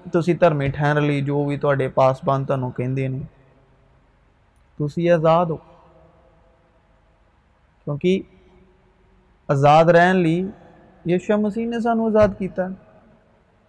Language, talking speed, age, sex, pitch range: Urdu, 90 wpm, 30-49, male, 145-175 Hz